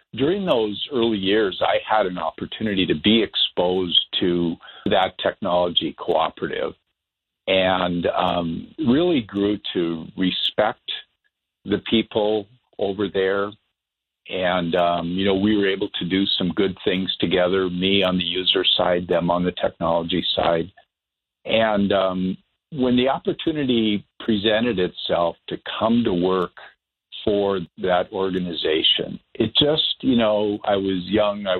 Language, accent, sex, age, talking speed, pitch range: English, American, male, 50-69, 135 wpm, 90-105 Hz